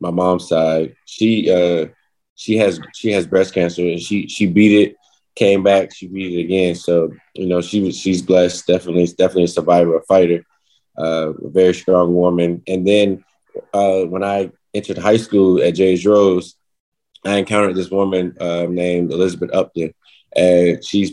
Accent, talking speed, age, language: American, 175 wpm, 20-39, English